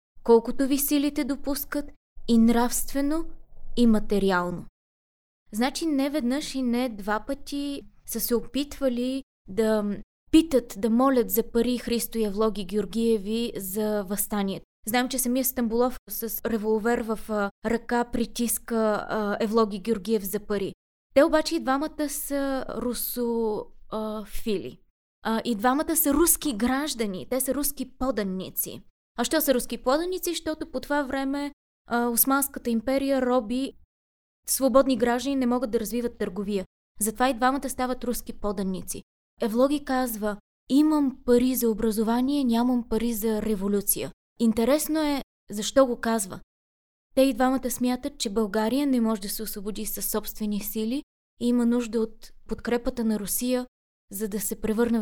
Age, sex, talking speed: 20-39, female, 135 wpm